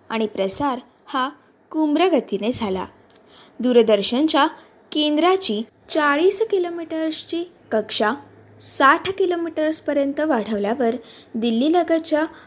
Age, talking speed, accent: 20-39, 70 wpm, native